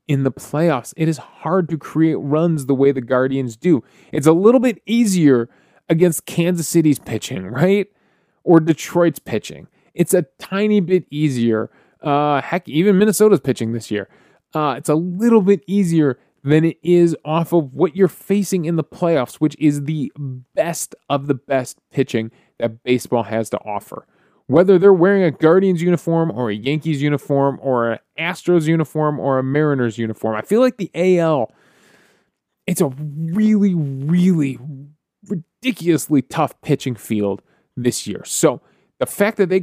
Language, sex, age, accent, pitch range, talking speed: English, male, 20-39, American, 135-180 Hz, 160 wpm